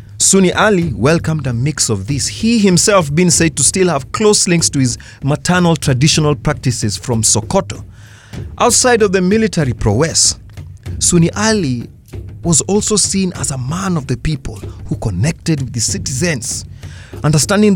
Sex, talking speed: male, 150 wpm